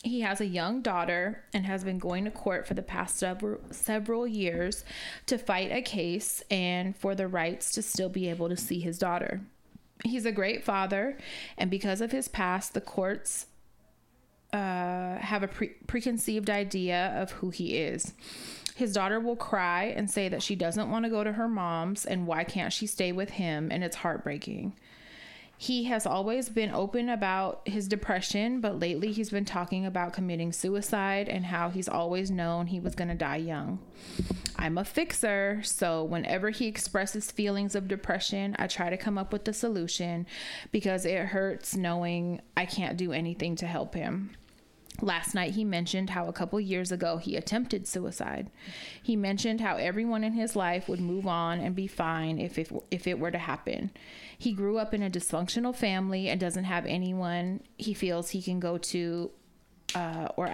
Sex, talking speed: female, 180 wpm